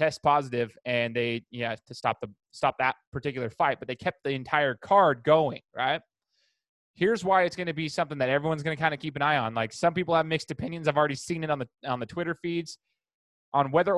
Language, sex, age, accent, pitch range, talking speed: English, male, 20-39, American, 125-160 Hz, 240 wpm